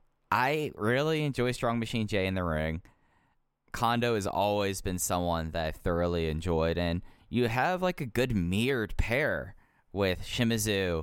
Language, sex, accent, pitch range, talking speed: English, male, American, 85-105 Hz, 150 wpm